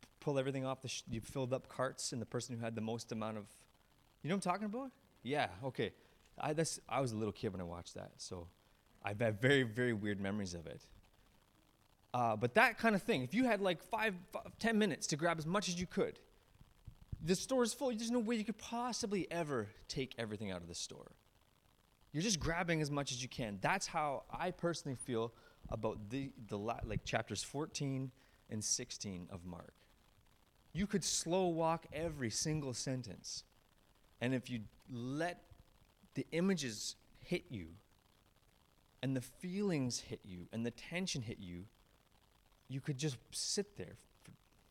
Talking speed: 185 wpm